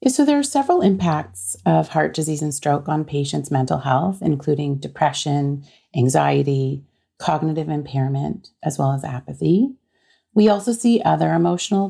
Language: English